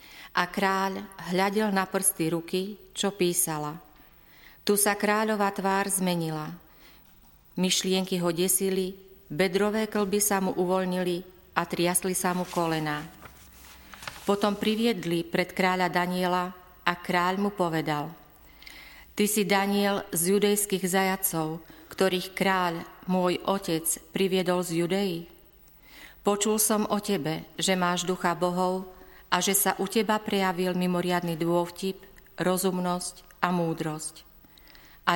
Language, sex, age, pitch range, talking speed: Slovak, female, 40-59, 170-195 Hz, 115 wpm